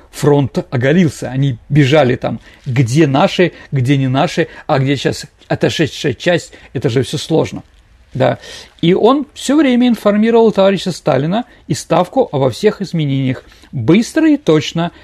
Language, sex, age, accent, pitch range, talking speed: Russian, male, 40-59, native, 140-195 Hz, 140 wpm